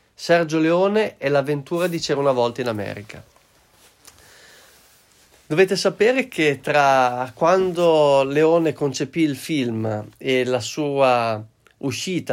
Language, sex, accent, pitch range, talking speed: Italian, male, native, 120-150 Hz, 110 wpm